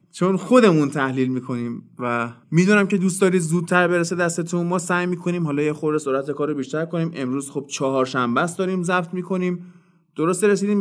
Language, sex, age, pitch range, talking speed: Persian, male, 20-39, 150-200 Hz, 180 wpm